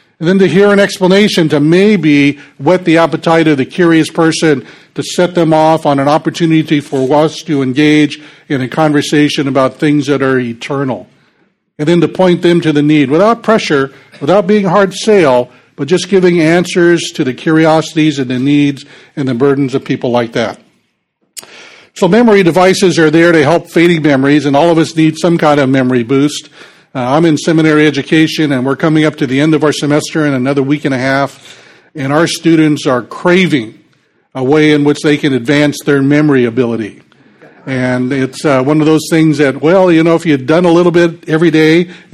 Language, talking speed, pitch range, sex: English, 200 wpm, 140-165 Hz, male